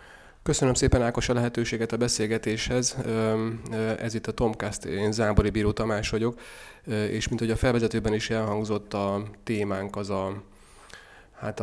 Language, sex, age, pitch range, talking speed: Hungarian, male, 30-49, 100-110 Hz, 145 wpm